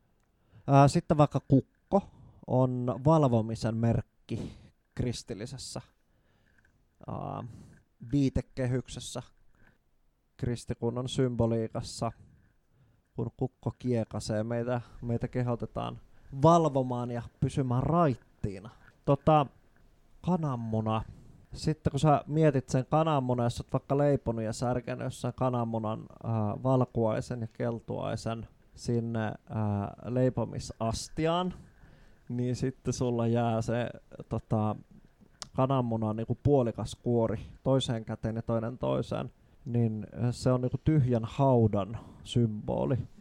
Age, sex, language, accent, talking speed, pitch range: 20-39, male, Finnish, native, 90 wpm, 115-130 Hz